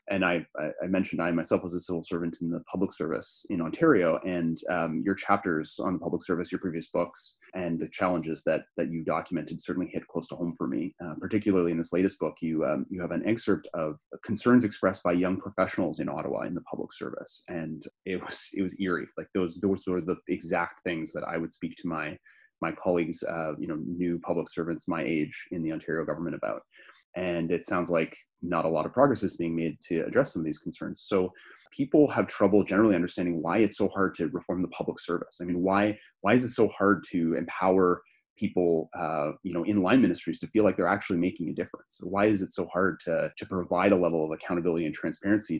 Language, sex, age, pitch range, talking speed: English, male, 30-49, 85-100 Hz, 230 wpm